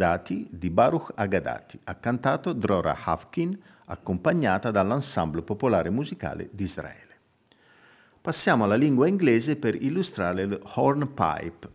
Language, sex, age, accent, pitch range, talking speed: Italian, male, 50-69, native, 95-130 Hz, 110 wpm